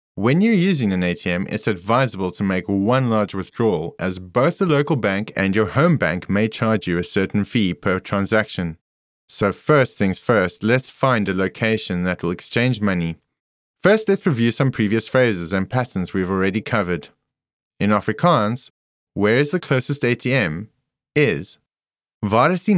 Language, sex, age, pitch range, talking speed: English, male, 30-49, 95-130 Hz, 160 wpm